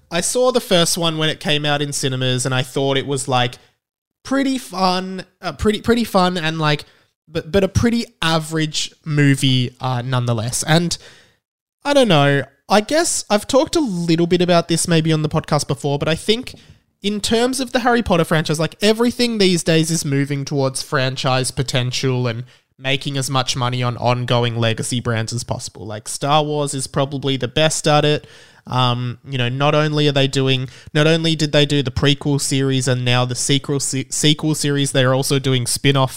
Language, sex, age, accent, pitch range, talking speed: English, male, 20-39, Australian, 125-160 Hz, 195 wpm